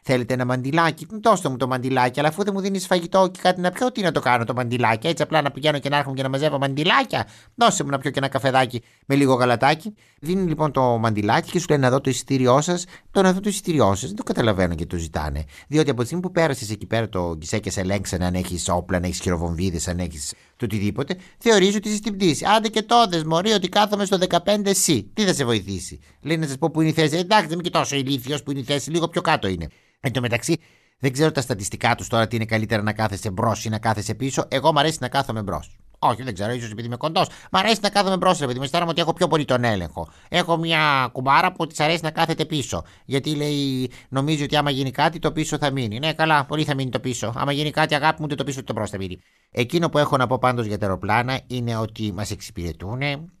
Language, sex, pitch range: Greek, male, 115-165 Hz